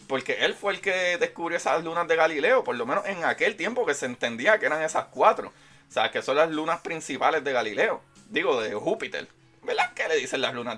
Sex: male